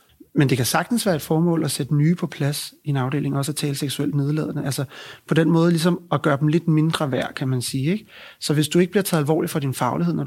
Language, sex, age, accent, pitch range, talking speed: Danish, male, 30-49, native, 130-160 Hz, 265 wpm